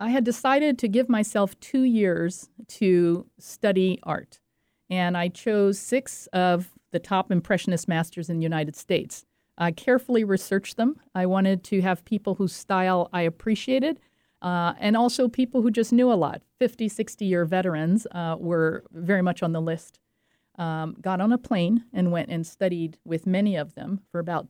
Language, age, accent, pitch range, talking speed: English, 50-69, American, 175-215 Hz, 175 wpm